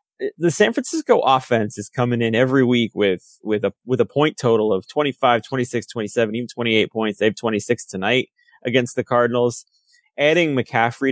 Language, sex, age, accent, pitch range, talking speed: English, male, 20-39, American, 110-135 Hz, 200 wpm